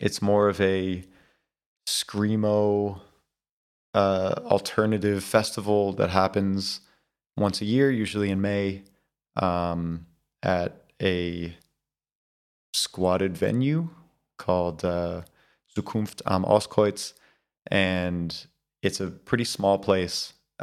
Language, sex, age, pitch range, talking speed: English, male, 20-39, 85-100 Hz, 95 wpm